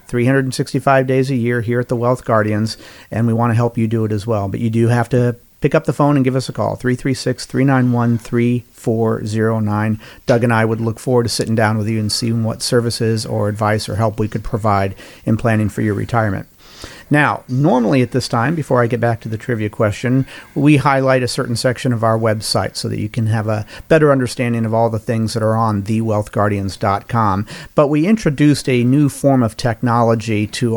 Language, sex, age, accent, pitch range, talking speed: English, male, 50-69, American, 110-135 Hz, 210 wpm